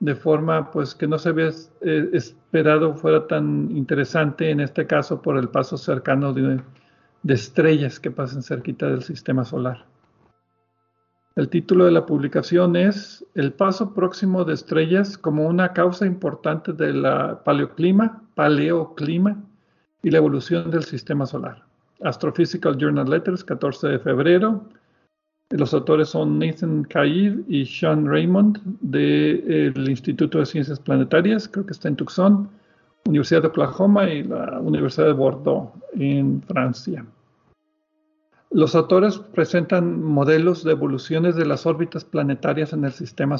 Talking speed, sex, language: 135 wpm, male, Spanish